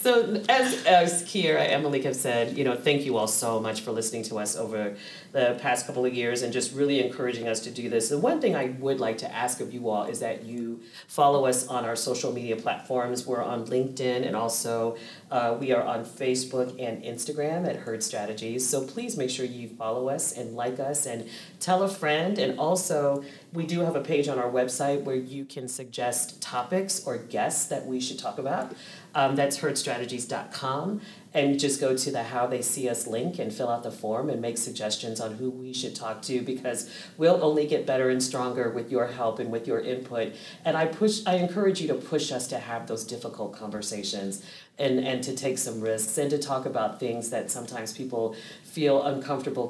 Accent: American